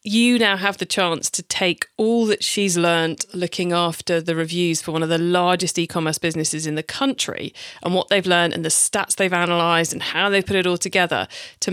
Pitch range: 165-200 Hz